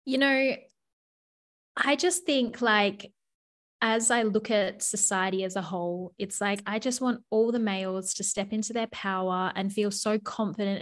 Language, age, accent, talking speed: English, 10-29, Australian, 170 wpm